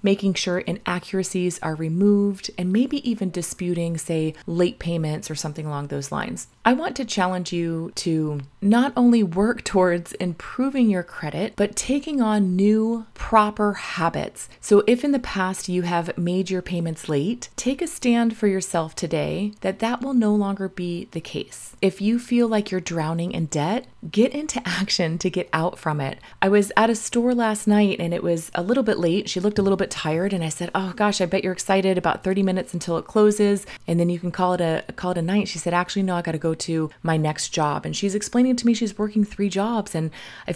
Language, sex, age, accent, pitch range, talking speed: English, female, 30-49, American, 170-210 Hz, 215 wpm